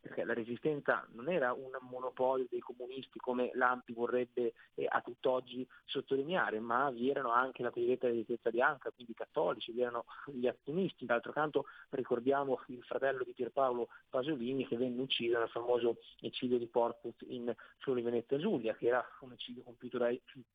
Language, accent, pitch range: Italian, native, 125-150 Hz